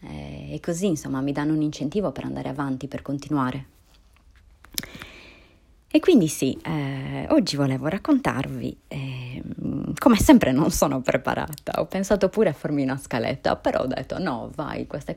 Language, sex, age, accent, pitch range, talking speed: Italian, female, 30-49, native, 130-165 Hz, 150 wpm